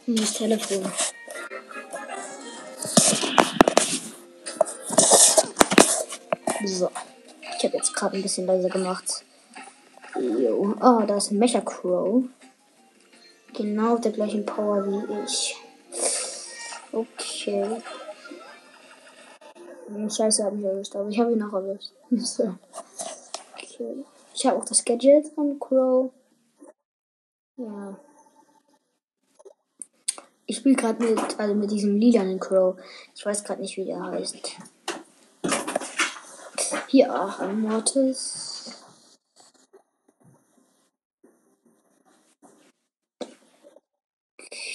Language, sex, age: German, female, 20-39